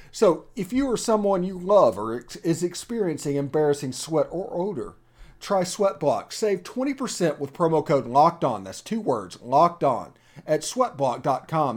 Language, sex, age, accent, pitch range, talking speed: English, male, 40-59, American, 130-180 Hz, 145 wpm